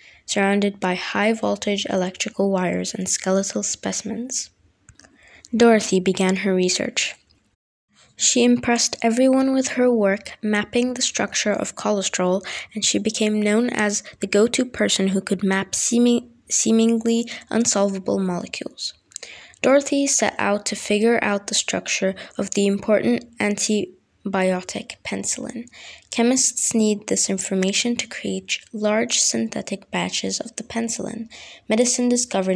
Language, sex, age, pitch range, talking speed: English, female, 20-39, 195-240 Hz, 120 wpm